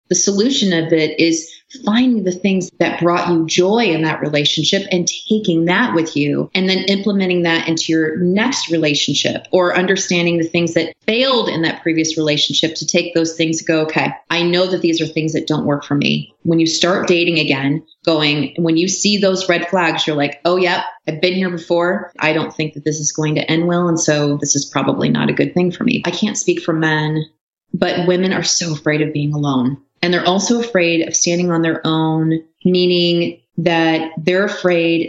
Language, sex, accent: English, female, American